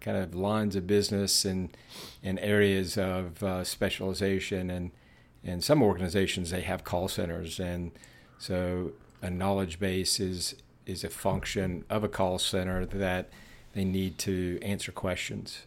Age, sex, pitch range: 50-69, male, 90-100 Hz